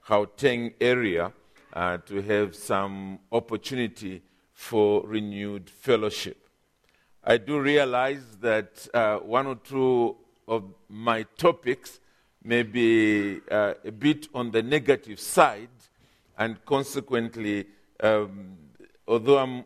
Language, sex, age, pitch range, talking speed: English, male, 50-69, 105-135 Hz, 105 wpm